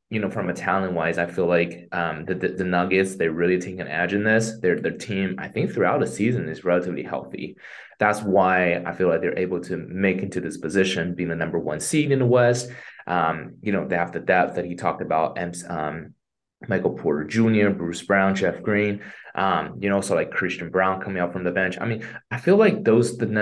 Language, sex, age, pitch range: Chinese, male, 20-39, 90-105 Hz